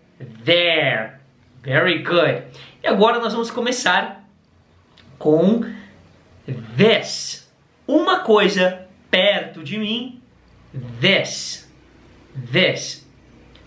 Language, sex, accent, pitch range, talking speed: English, male, Brazilian, 130-210 Hz, 75 wpm